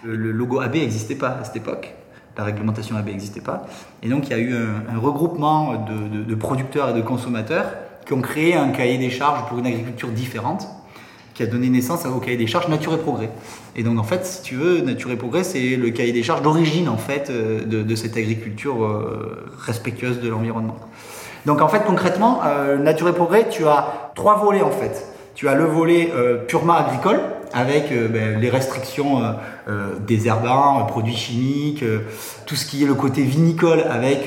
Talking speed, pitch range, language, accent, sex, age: 205 wpm, 115-150 Hz, French, French, male, 20-39